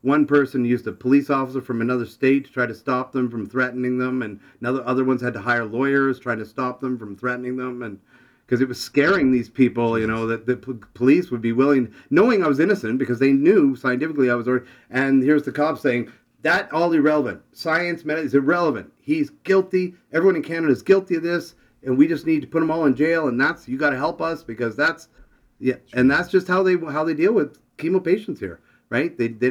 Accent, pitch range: American, 125-150 Hz